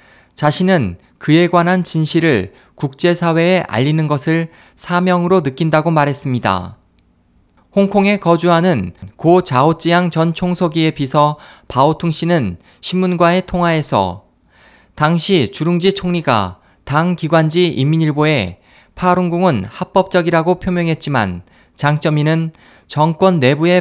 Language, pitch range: Korean, 130-175 Hz